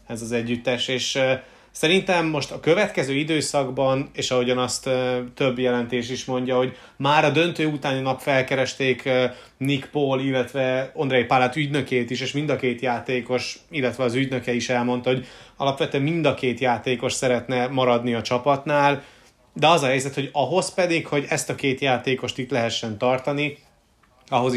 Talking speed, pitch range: 170 wpm, 120-140 Hz